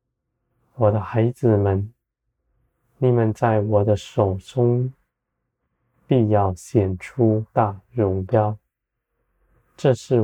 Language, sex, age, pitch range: Chinese, male, 20-39, 105-125 Hz